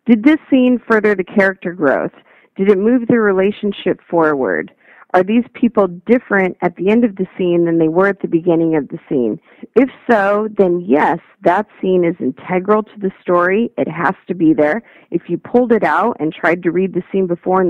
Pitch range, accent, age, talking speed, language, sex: 175-240 Hz, American, 40-59, 205 wpm, English, female